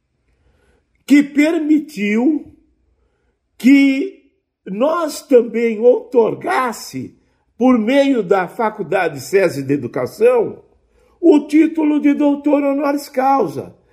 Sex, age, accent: male, 50-69, Brazilian